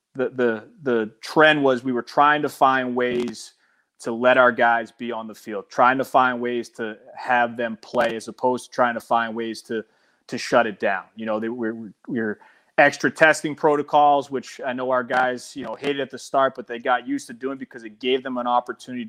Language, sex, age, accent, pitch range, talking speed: English, male, 30-49, American, 120-145 Hz, 225 wpm